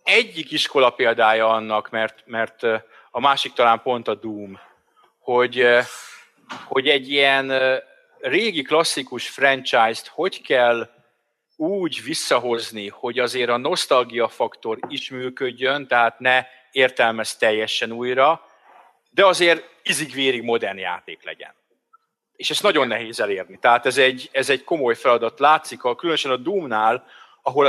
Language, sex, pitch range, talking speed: Czech, male, 115-145 Hz, 130 wpm